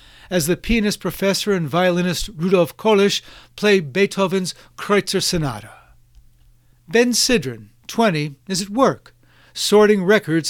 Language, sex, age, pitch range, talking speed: English, male, 60-79, 145-195 Hz, 115 wpm